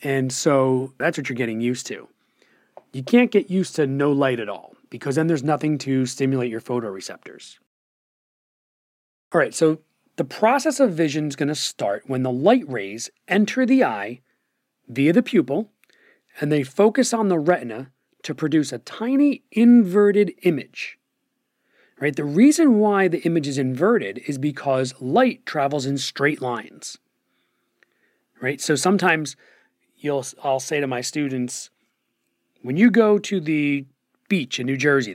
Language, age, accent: English, 40-59, American